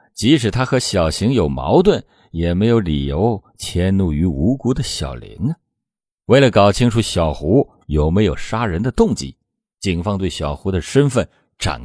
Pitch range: 85-120 Hz